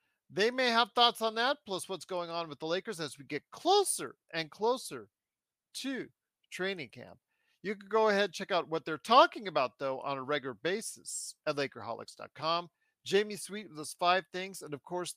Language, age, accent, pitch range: English, 40-59, American, 155-220 Hz